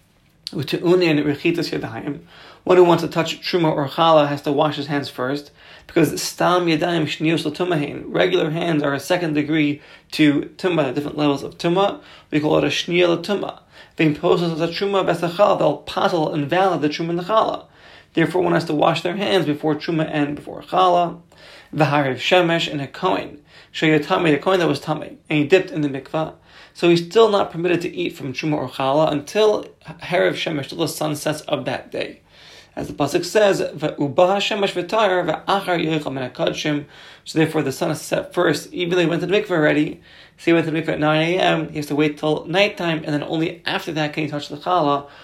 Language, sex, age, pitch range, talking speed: English, male, 30-49, 150-180 Hz, 195 wpm